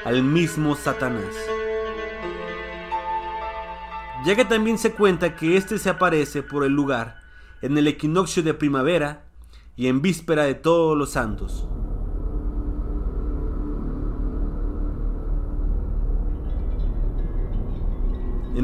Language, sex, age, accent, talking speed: Spanish, male, 30-49, Mexican, 90 wpm